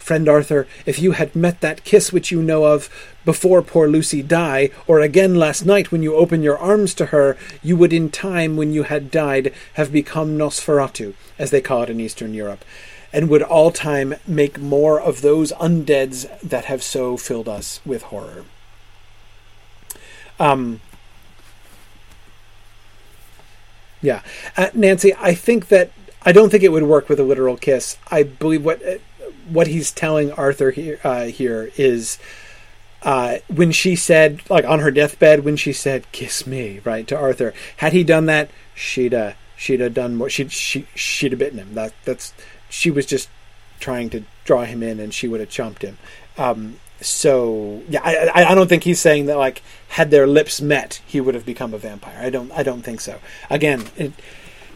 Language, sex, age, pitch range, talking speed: English, male, 40-59, 120-160 Hz, 185 wpm